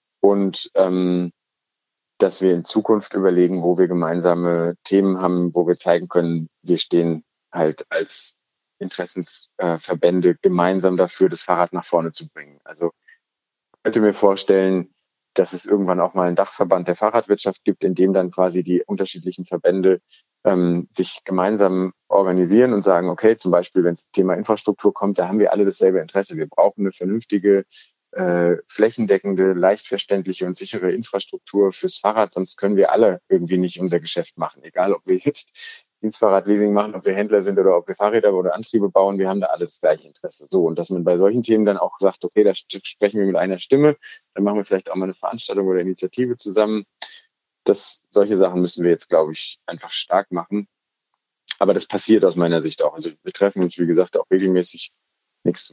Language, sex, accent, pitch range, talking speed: German, male, German, 90-100 Hz, 185 wpm